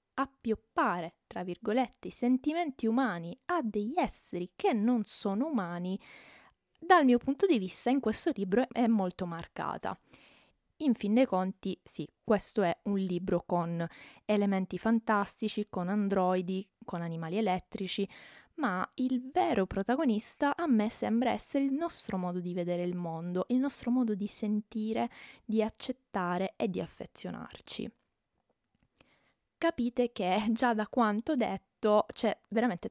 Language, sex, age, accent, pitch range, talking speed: Italian, female, 20-39, native, 190-240 Hz, 135 wpm